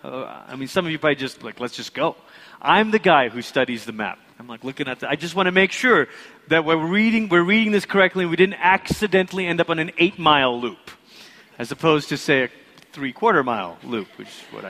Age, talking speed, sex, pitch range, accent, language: 30-49, 240 wpm, male, 160-215 Hz, American, English